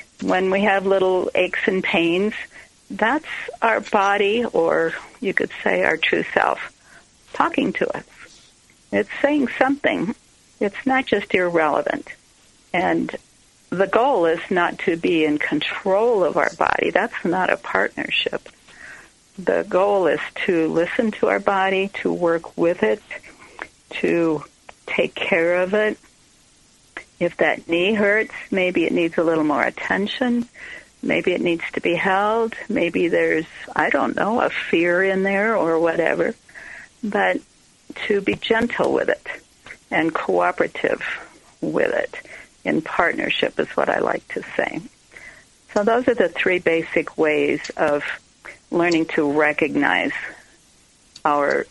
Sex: female